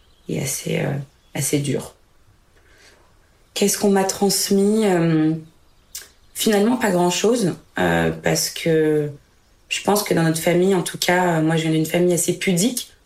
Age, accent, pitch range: 20-39, French, 155-180 Hz